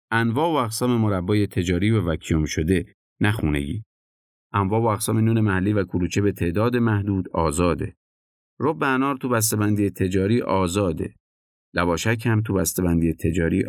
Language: Persian